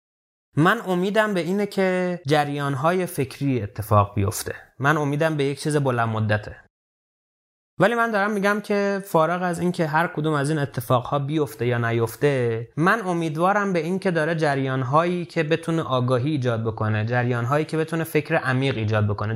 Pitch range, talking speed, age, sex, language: 120-160 Hz, 150 wpm, 30-49, male, Persian